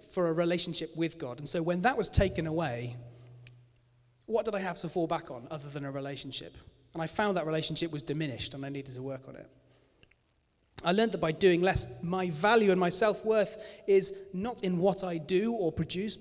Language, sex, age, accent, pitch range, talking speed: English, male, 30-49, British, 140-195 Hz, 210 wpm